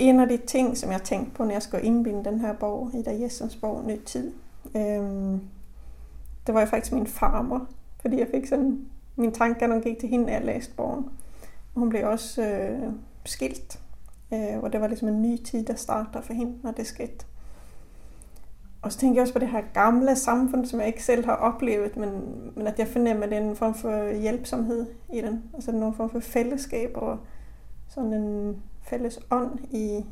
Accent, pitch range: native, 215-240 Hz